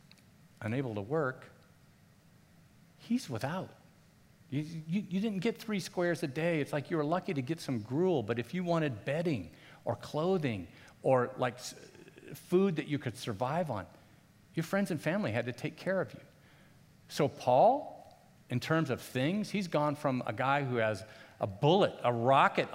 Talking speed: 170 wpm